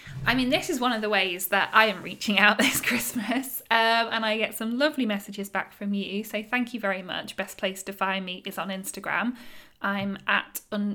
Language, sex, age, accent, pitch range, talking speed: English, female, 10-29, British, 200-245 Hz, 225 wpm